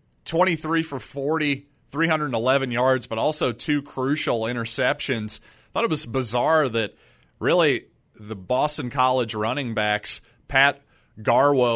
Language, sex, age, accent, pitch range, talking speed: English, male, 30-49, American, 115-145 Hz, 120 wpm